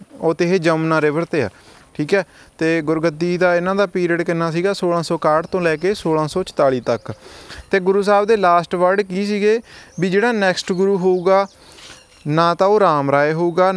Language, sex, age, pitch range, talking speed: Punjabi, male, 20-39, 150-175 Hz, 185 wpm